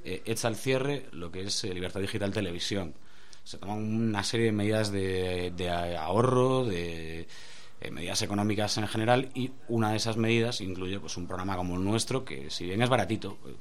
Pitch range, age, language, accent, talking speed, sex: 90-115 Hz, 30-49, Spanish, Spanish, 180 wpm, male